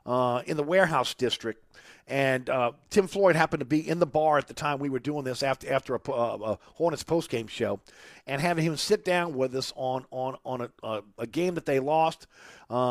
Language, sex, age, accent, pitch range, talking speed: English, male, 50-69, American, 130-180 Hz, 225 wpm